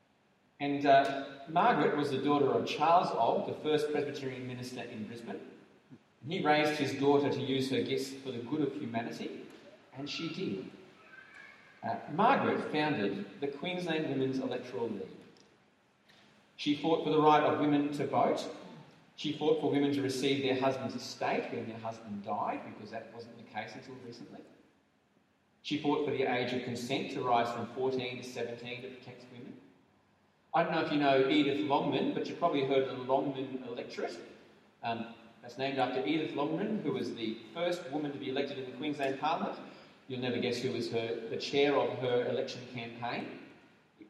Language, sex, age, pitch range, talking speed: English, male, 40-59, 125-150 Hz, 180 wpm